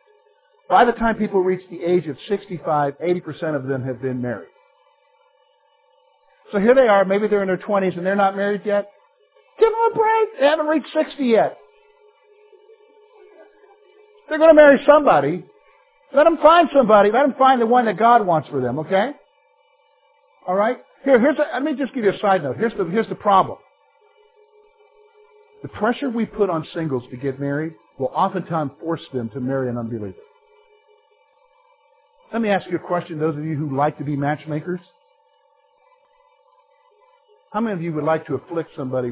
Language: English